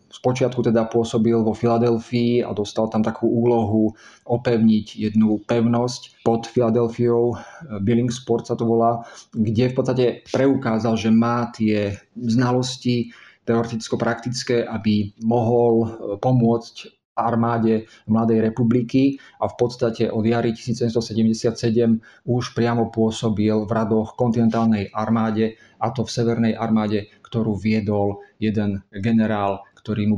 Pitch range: 110-120 Hz